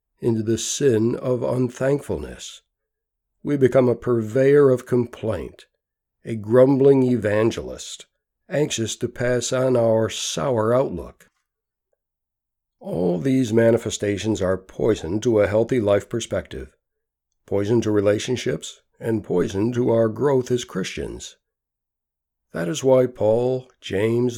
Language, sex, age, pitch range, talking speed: English, male, 60-79, 110-130 Hz, 115 wpm